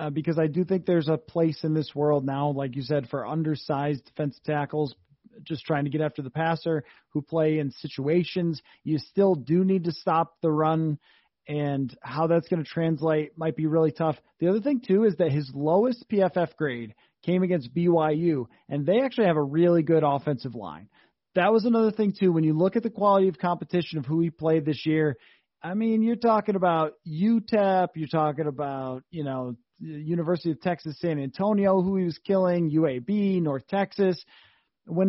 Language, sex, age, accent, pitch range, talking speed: English, male, 30-49, American, 150-185 Hz, 195 wpm